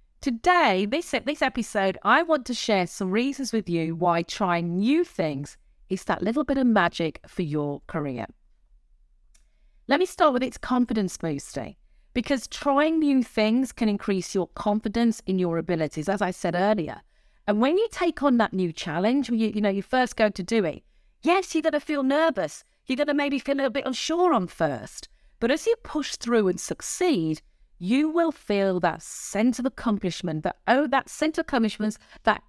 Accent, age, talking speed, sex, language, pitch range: British, 40-59, 190 wpm, female, English, 190-285 Hz